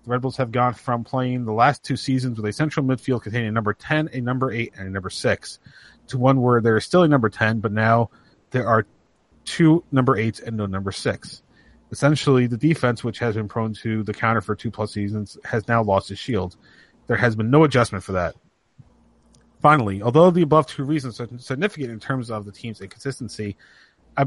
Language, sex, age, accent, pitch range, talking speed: English, male, 30-49, American, 110-135 Hz, 215 wpm